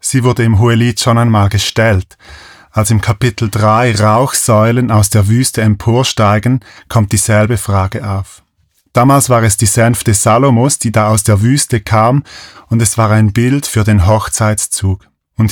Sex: male